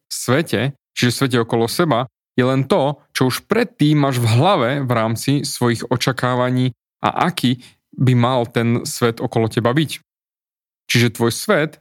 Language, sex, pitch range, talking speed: Slovak, male, 120-145 Hz, 150 wpm